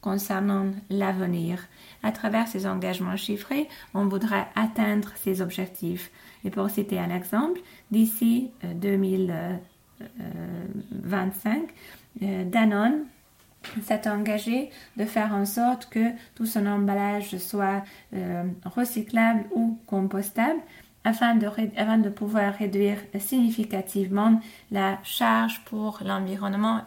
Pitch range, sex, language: 190-225 Hz, female, Hungarian